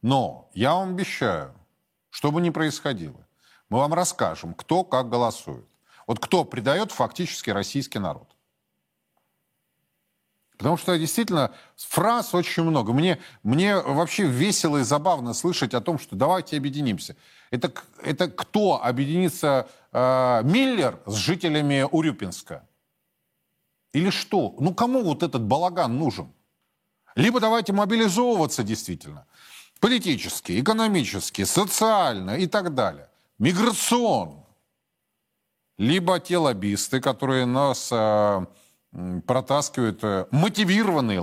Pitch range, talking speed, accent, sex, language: 105-180 Hz, 105 wpm, native, male, Russian